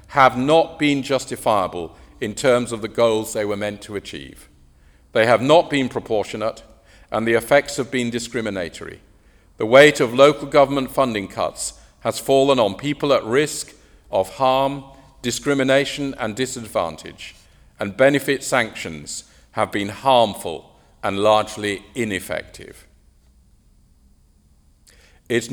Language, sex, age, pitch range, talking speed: English, male, 50-69, 100-135 Hz, 125 wpm